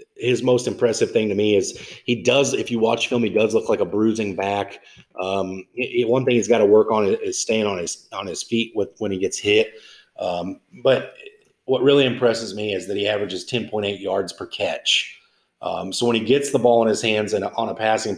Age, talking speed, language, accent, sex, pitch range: 30-49, 230 wpm, English, American, male, 105-140 Hz